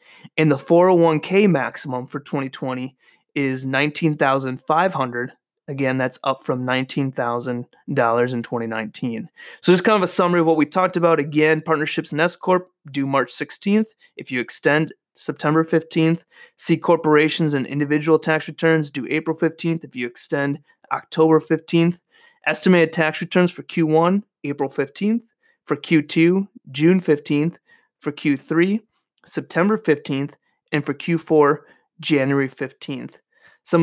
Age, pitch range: 30-49, 140-165 Hz